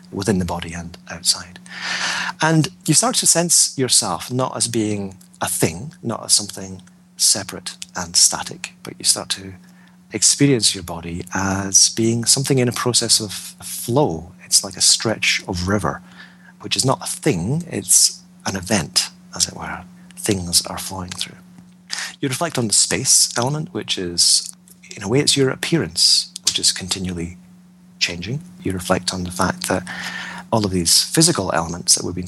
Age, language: 40-59, English